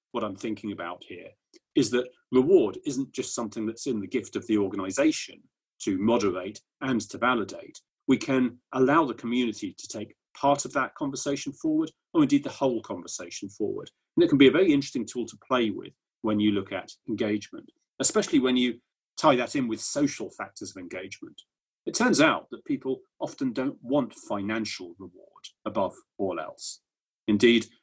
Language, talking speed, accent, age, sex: English, 175 wpm, British, 30-49, male